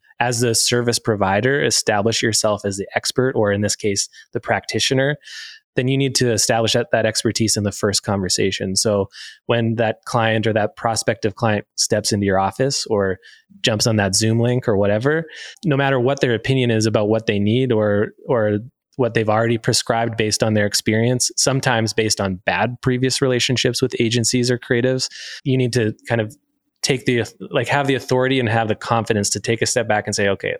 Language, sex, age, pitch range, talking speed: English, male, 20-39, 105-125 Hz, 195 wpm